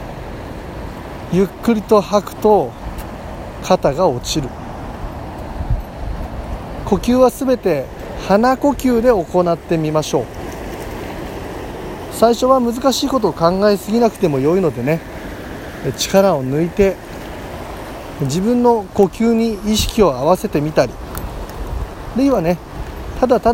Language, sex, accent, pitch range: Japanese, male, native, 155-225 Hz